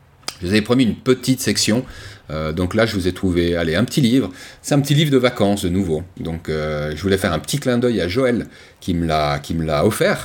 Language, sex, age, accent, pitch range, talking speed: French, male, 30-49, French, 90-125 Hz, 260 wpm